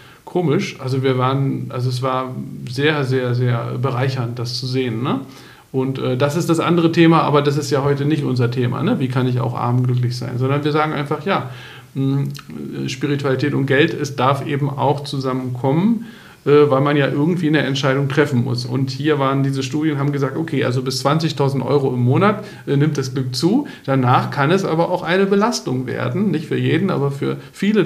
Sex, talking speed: male, 190 wpm